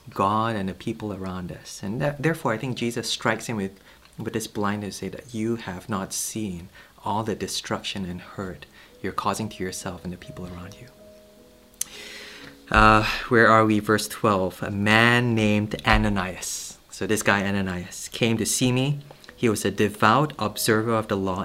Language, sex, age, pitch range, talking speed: English, male, 30-49, 100-125 Hz, 180 wpm